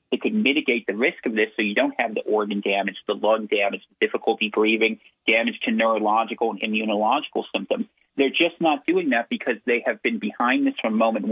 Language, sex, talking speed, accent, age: English, male, 200 wpm, American, 40-59